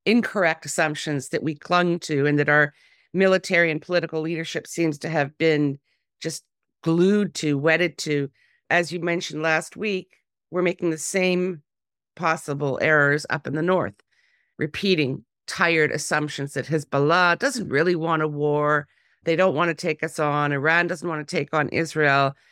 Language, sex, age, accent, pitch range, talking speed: English, female, 50-69, American, 150-180 Hz, 165 wpm